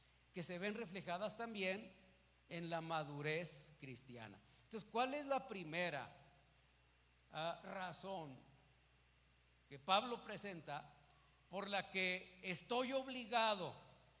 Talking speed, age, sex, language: 100 wpm, 40-59, male, Spanish